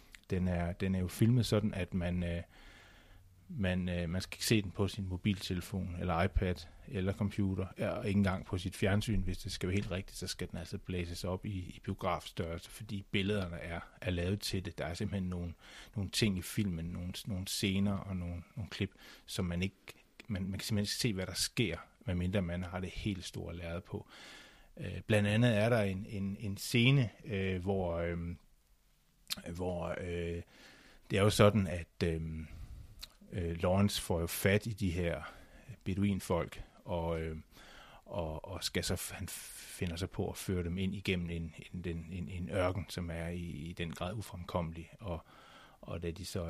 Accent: native